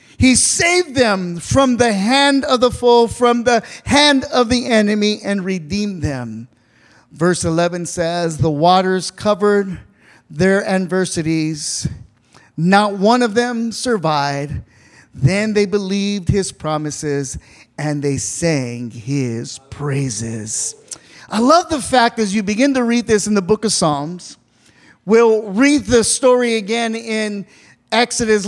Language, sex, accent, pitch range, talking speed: English, male, American, 185-260 Hz, 135 wpm